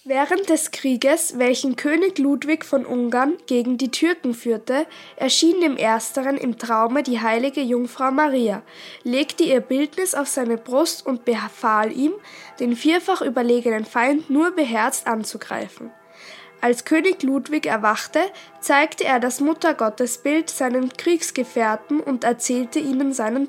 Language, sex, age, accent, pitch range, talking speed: German, female, 10-29, German, 235-295 Hz, 130 wpm